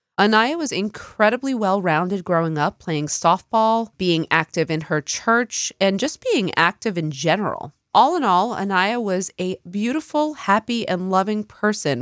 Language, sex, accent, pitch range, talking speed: English, female, American, 165-225 Hz, 150 wpm